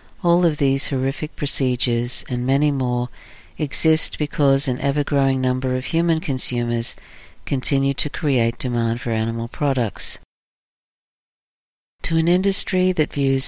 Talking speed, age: 125 wpm, 50-69